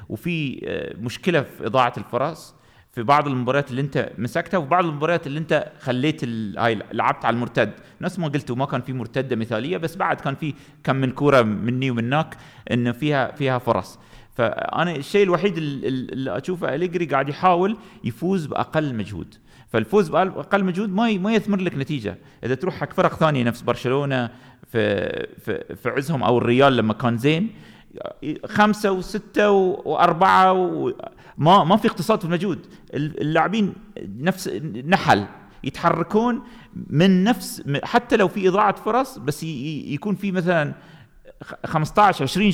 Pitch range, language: 135-185 Hz, Arabic